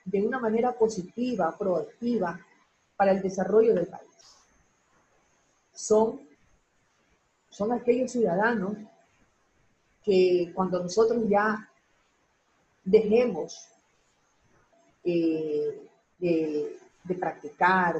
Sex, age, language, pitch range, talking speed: female, 40-59, Spanish, 180-235 Hz, 75 wpm